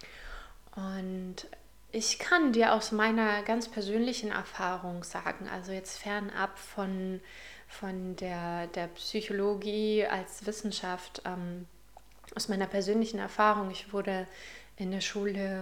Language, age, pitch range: German, 20-39, 195-220 Hz